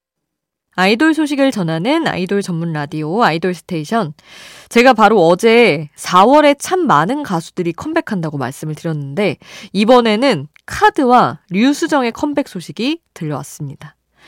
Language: Korean